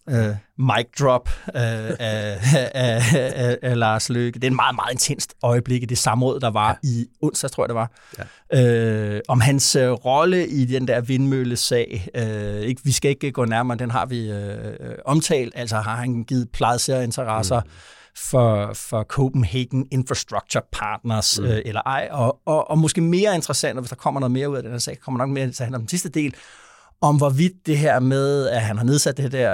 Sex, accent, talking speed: male, native, 165 wpm